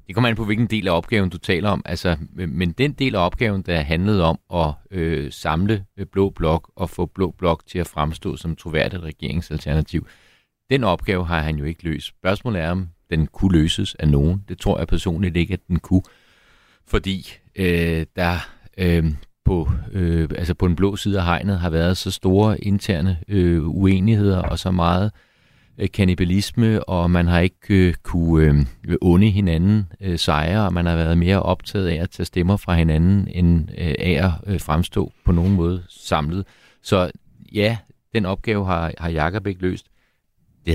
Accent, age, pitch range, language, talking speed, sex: native, 40-59, 80-95 Hz, Danish, 185 wpm, male